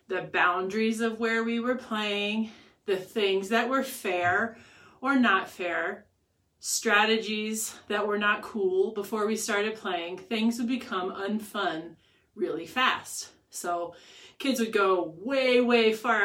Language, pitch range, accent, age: English, 195-245 Hz, American, 30-49